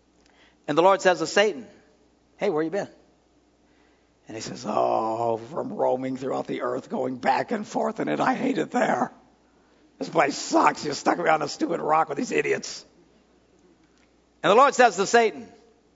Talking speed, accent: 175 wpm, American